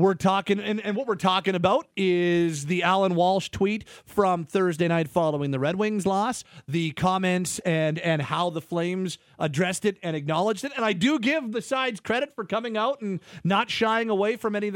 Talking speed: 205 wpm